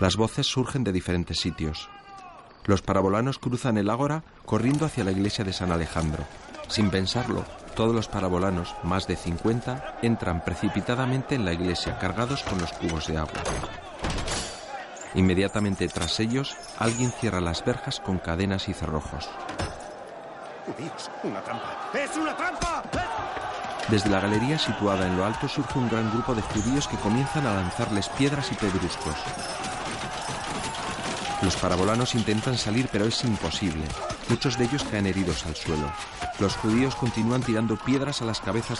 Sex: male